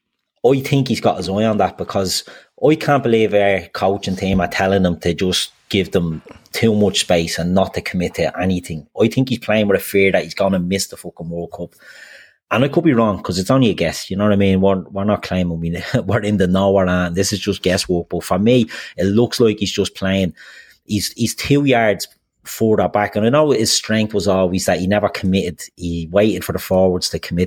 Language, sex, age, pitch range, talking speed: English, male, 30-49, 90-105 Hz, 240 wpm